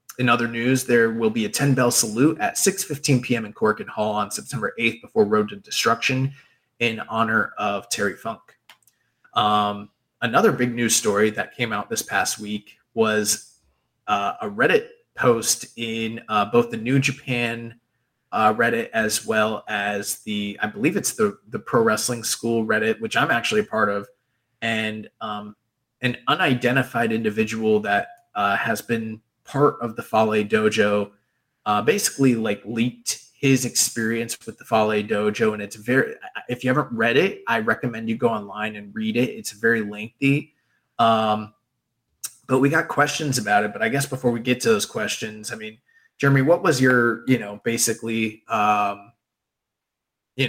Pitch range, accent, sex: 105-130 Hz, American, male